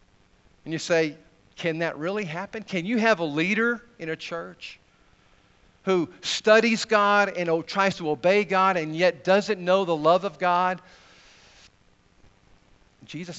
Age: 50-69